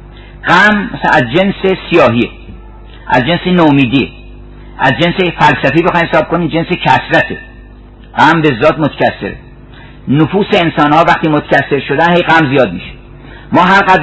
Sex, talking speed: male, 130 wpm